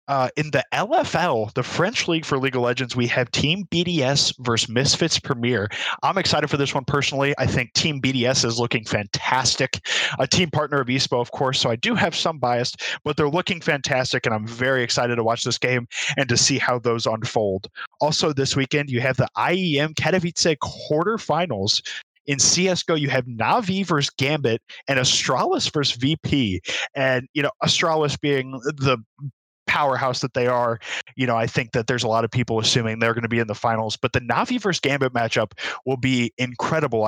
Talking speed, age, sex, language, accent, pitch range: 190 wpm, 20-39, male, English, American, 115-145 Hz